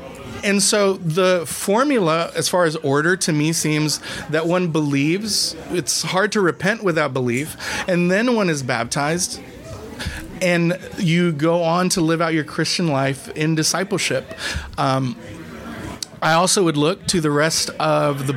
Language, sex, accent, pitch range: English, male, American, 150-180 Hz